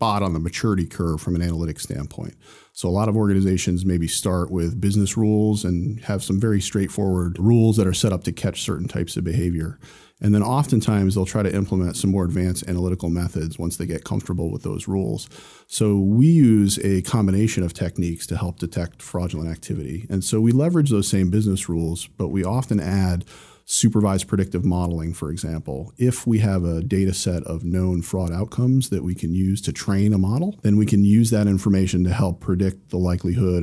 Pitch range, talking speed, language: 90-105 Hz, 200 wpm, English